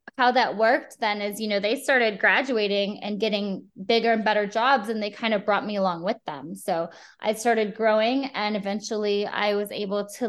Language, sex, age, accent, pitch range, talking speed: English, female, 20-39, American, 200-245 Hz, 205 wpm